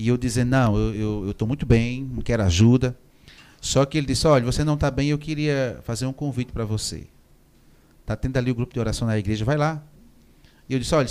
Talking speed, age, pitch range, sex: 230 wpm, 30-49, 110-155 Hz, male